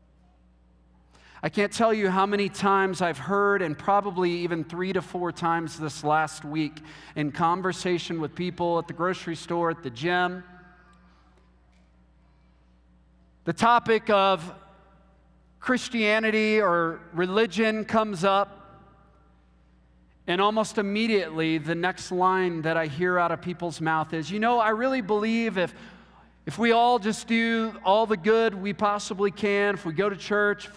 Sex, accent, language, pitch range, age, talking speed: male, American, English, 160-220 Hz, 40-59, 145 wpm